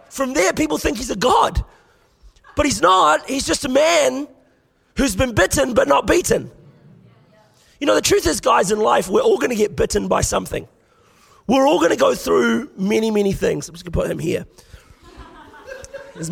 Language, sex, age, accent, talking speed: English, male, 30-49, Australian, 185 wpm